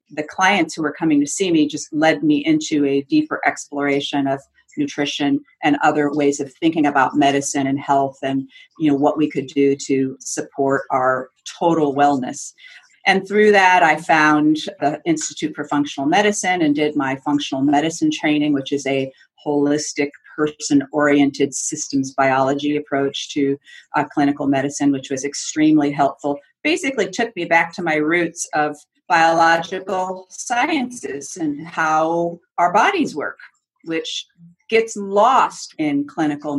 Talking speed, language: 150 wpm, English